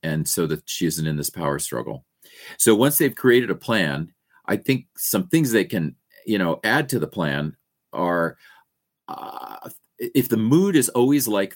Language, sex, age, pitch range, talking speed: English, male, 40-59, 80-110 Hz, 180 wpm